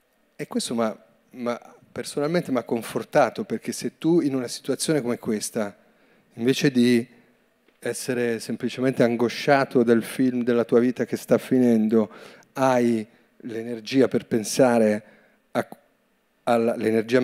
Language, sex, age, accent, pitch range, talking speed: Italian, male, 40-59, native, 110-130 Hz, 110 wpm